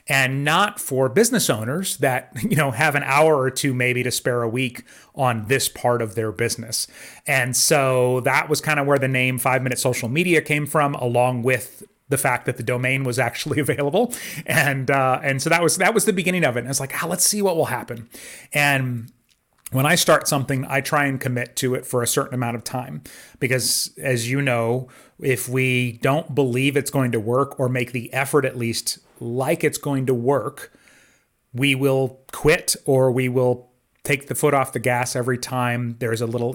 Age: 30-49